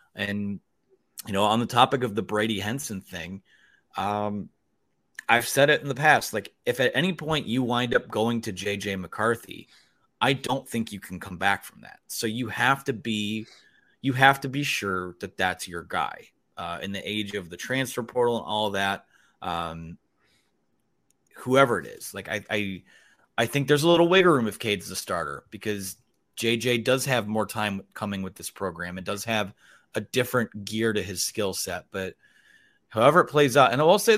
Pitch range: 100-135 Hz